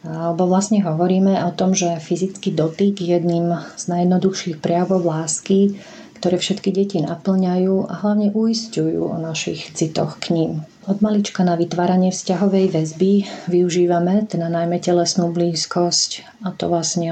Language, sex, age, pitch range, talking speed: Slovak, female, 40-59, 175-195 Hz, 140 wpm